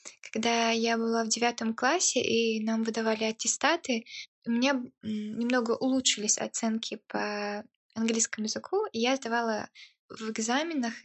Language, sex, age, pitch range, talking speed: Russian, female, 20-39, 215-240 Hz, 125 wpm